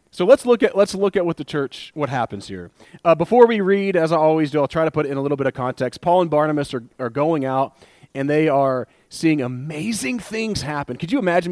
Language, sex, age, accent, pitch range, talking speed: English, male, 30-49, American, 135-180 Hz, 255 wpm